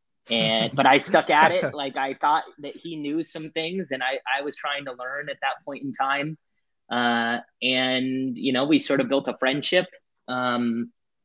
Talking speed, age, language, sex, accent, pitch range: 195 wpm, 20-39, English, male, American, 120-140 Hz